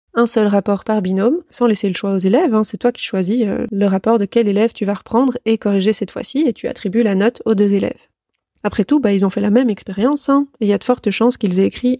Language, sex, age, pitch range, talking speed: French, female, 20-39, 200-235 Hz, 280 wpm